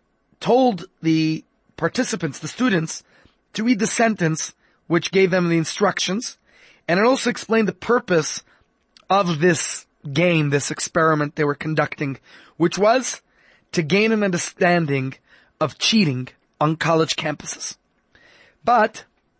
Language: English